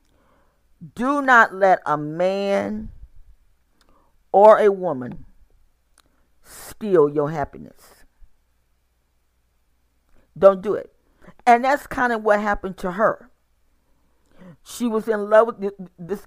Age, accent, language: 40-59, American, English